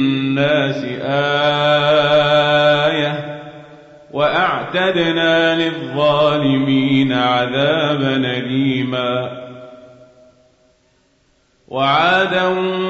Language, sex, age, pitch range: Arabic, male, 40-59, 135-185 Hz